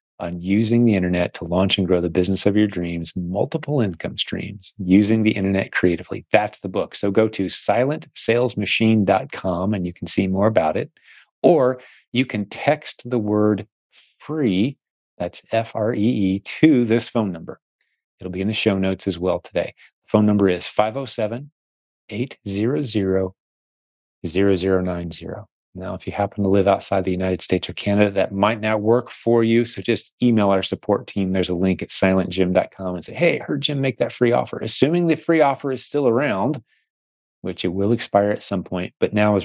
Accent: American